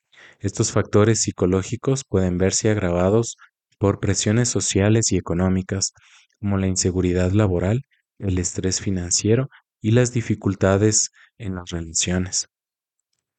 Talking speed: 110 wpm